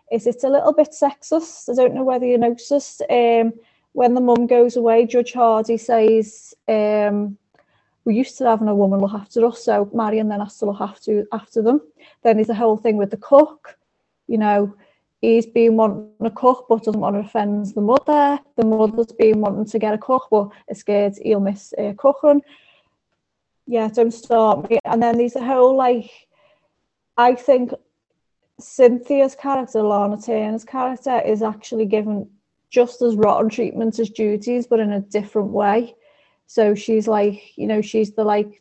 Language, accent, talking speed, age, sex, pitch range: English, British, 180 wpm, 30-49, female, 210-240 Hz